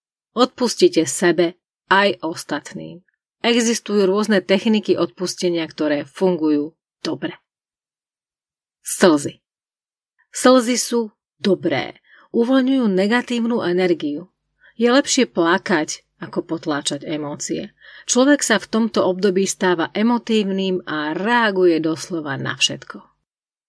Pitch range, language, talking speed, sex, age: 170-235 Hz, Slovak, 90 wpm, female, 30-49